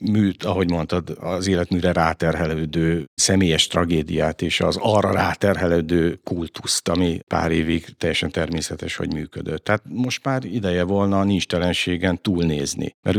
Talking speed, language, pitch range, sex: 135 wpm, Hungarian, 85-95 Hz, male